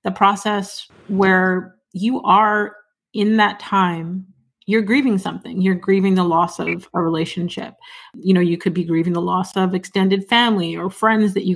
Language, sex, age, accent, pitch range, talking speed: English, female, 30-49, American, 175-210 Hz, 170 wpm